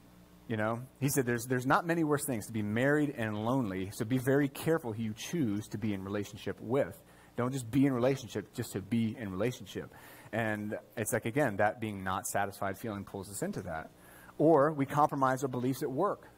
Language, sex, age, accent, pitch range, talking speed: English, male, 30-49, American, 100-130 Hz, 210 wpm